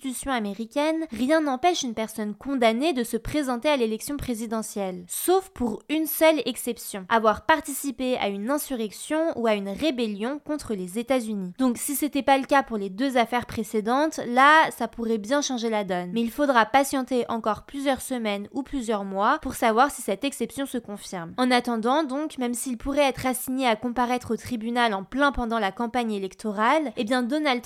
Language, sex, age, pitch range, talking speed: French, female, 20-39, 225-280 Hz, 185 wpm